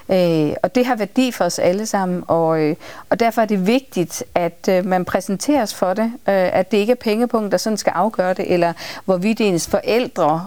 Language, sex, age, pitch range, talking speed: Danish, female, 40-59, 180-225 Hz, 220 wpm